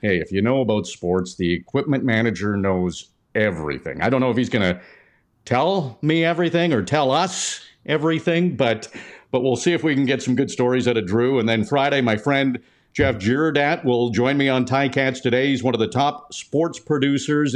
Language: English